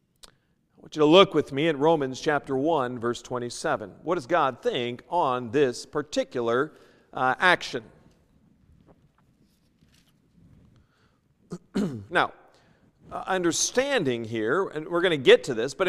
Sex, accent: male, American